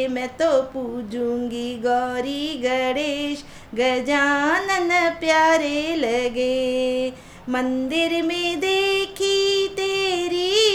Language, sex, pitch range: English, female, 255-345 Hz